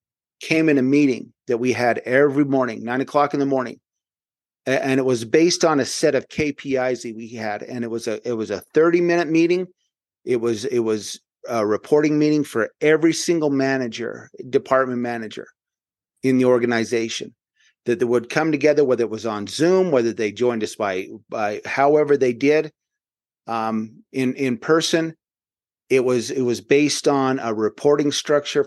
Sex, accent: male, American